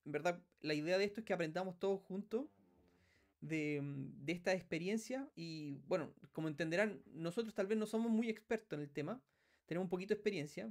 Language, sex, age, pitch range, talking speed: Spanish, male, 30-49, 145-220 Hz, 190 wpm